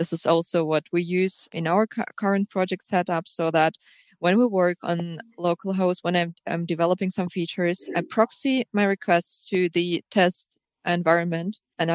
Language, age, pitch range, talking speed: English, 20-39, 165-185 Hz, 165 wpm